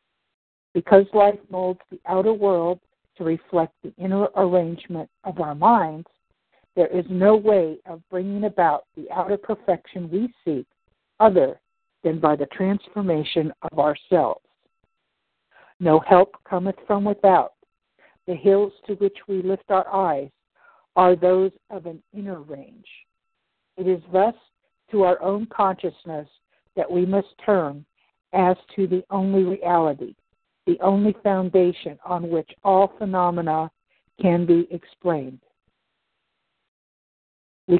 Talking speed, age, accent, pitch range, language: 125 wpm, 60-79, American, 170-200 Hz, English